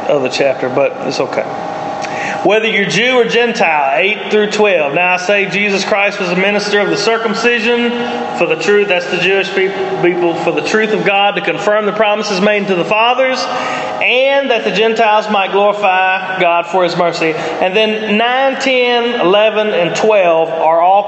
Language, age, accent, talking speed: English, 30-49, American, 185 wpm